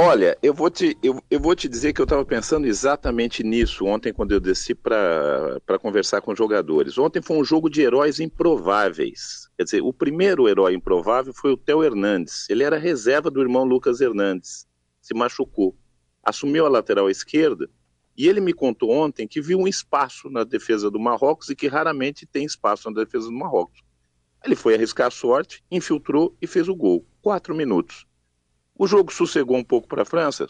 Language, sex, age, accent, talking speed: Portuguese, male, 50-69, Brazilian, 190 wpm